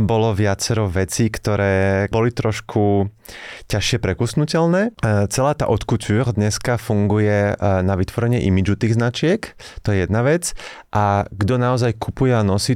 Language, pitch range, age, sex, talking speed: Slovak, 95-125 Hz, 30-49, male, 130 wpm